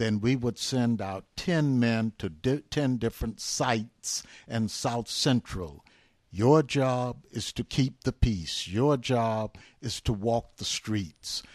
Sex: male